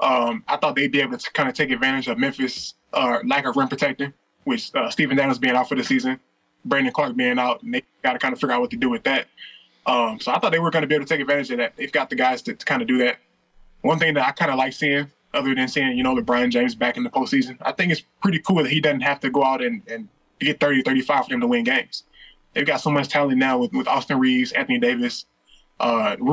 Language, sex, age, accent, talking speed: English, male, 20-39, American, 280 wpm